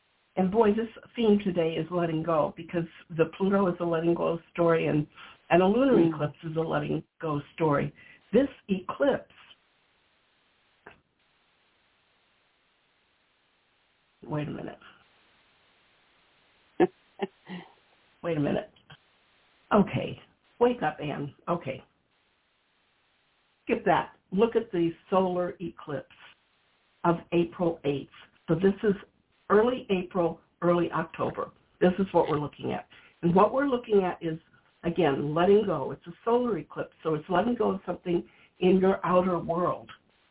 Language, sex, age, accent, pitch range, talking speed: English, female, 60-79, American, 170-205 Hz, 125 wpm